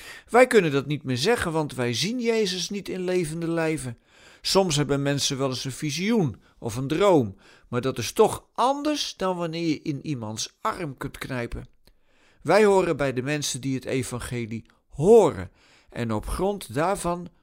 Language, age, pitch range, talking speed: Dutch, 50-69, 130-190 Hz, 170 wpm